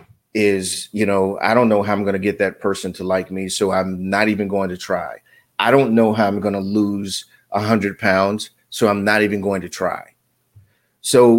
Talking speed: 220 wpm